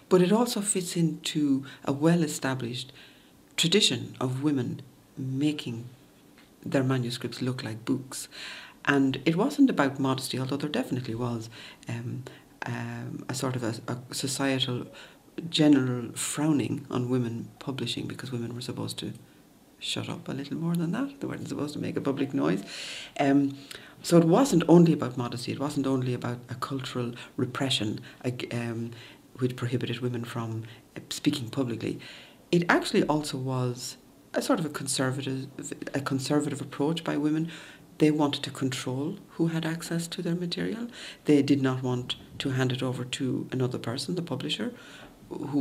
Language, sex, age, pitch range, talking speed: English, female, 60-79, 125-155 Hz, 155 wpm